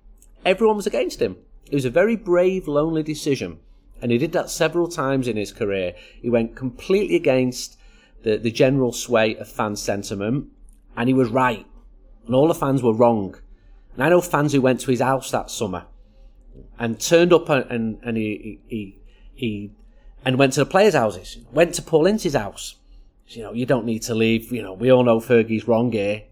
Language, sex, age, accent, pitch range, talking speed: English, male, 30-49, British, 105-135 Hz, 195 wpm